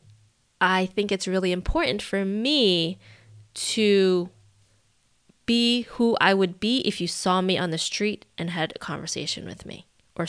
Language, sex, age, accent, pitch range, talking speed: English, female, 20-39, American, 170-220 Hz, 155 wpm